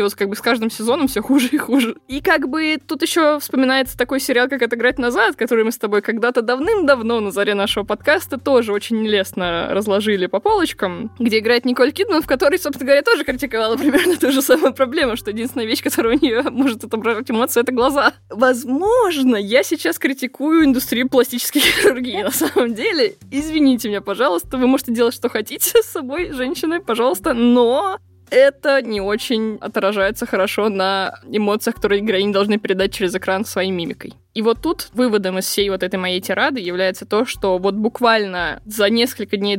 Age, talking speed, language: 20-39, 180 wpm, Russian